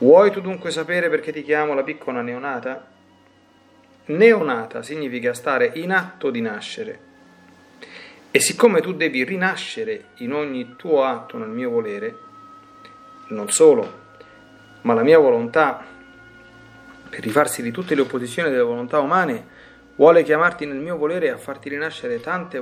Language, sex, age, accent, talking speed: Italian, male, 40-59, native, 140 wpm